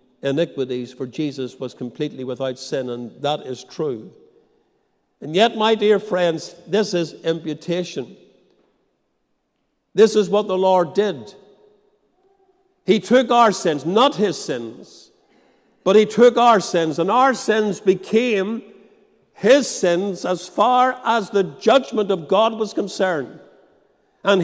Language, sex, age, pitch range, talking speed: English, male, 60-79, 185-260 Hz, 130 wpm